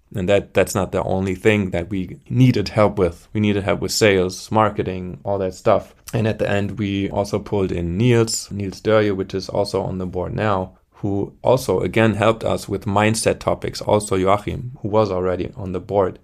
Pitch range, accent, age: 95-110 Hz, German, 20-39